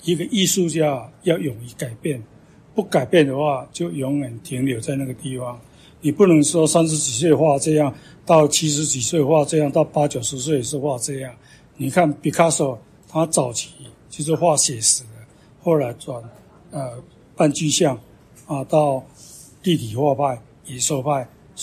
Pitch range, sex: 135-160 Hz, male